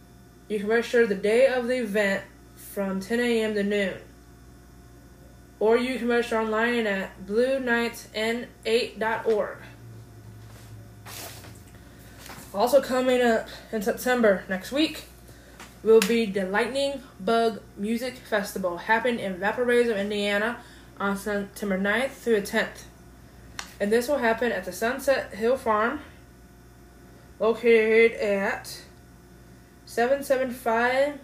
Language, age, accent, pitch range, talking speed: English, 20-39, American, 185-240 Hz, 110 wpm